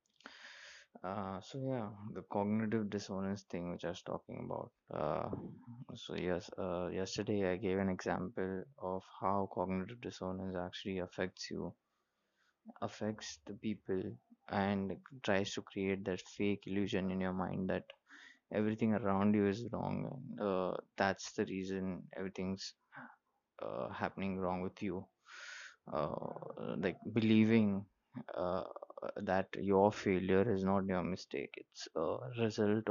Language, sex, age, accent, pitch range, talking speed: English, male, 20-39, Indian, 95-110 Hz, 130 wpm